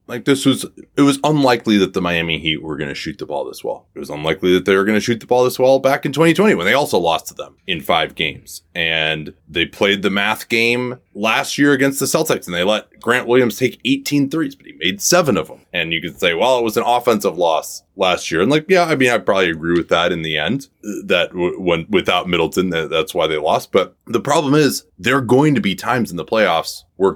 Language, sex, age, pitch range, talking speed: English, male, 20-39, 90-135 Hz, 255 wpm